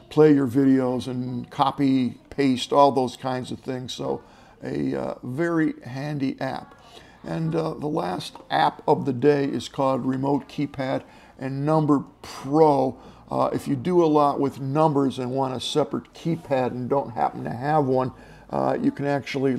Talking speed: 170 wpm